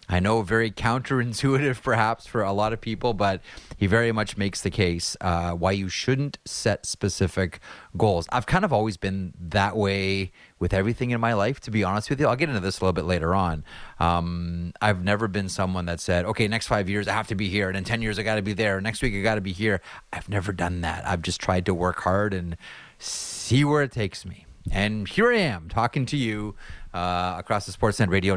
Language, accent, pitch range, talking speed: English, American, 90-110 Hz, 235 wpm